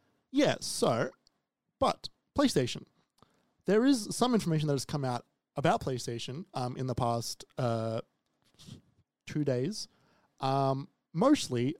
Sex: male